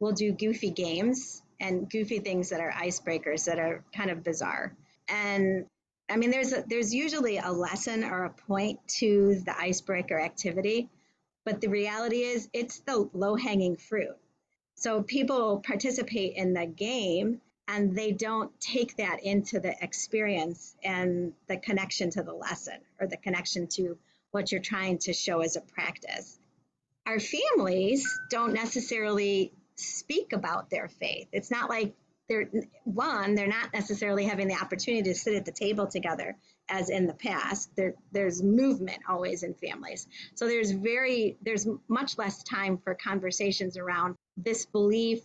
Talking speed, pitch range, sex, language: 155 wpm, 180-220 Hz, female, English